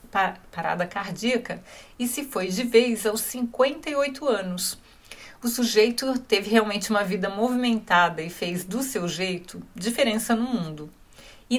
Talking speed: 135 wpm